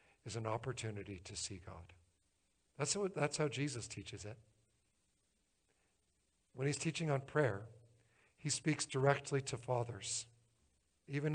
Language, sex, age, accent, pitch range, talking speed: English, male, 50-69, American, 105-135 Hz, 125 wpm